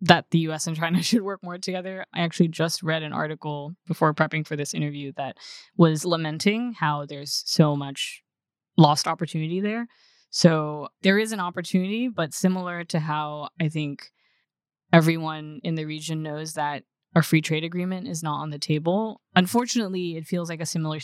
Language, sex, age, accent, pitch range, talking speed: English, female, 10-29, American, 150-180 Hz, 175 wpm